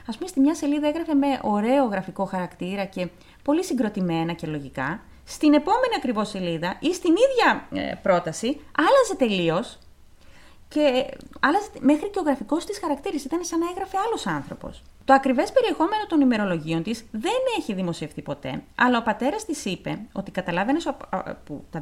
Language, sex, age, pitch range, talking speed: Greek, female, 30-49, 190-305 Hz, 160 wpm